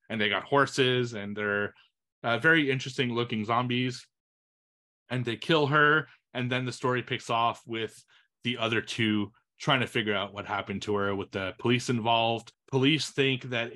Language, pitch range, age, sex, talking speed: English, 105-130 Hz, 30-49, male, 175 wpm